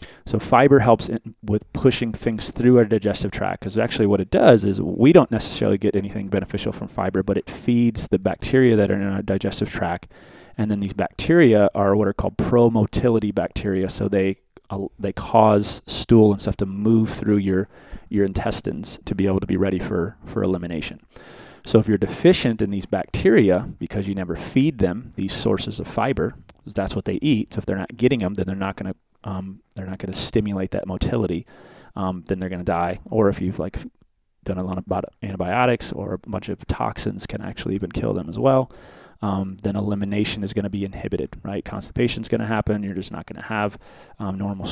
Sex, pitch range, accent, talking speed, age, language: male, 95-115 Hz, American, 210 wpm, 30-49, English